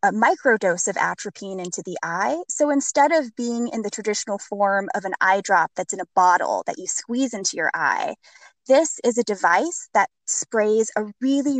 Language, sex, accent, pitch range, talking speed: English, female, American, 195-280 Hz, 190 wpm